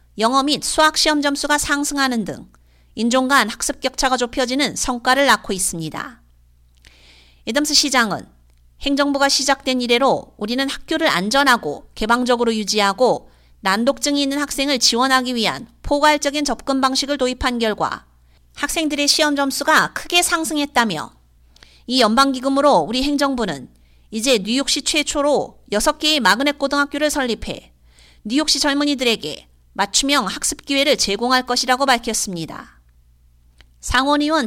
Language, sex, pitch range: Korean, female, 205-285 Hz